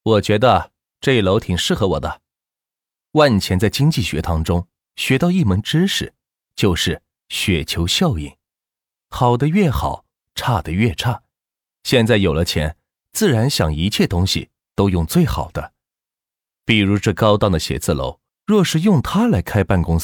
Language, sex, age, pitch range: Chinese, male, 30-49, 85-115 Hz